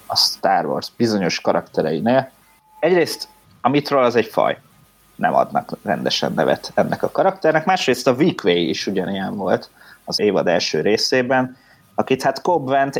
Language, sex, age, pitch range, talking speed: Hungarian, male, 30-49, 105-155 Hz, 150 wpm